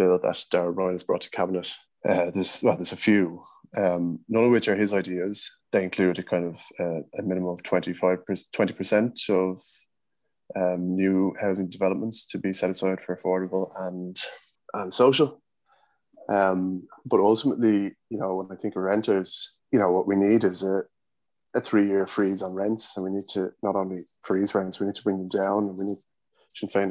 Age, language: 20-39, English